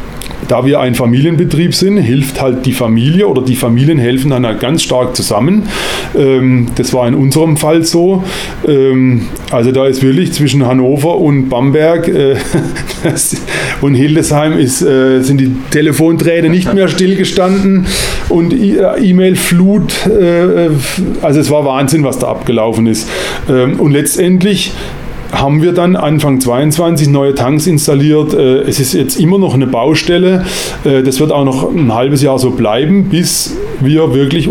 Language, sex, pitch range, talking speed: German, male, 130-160 Hz, 140 wpm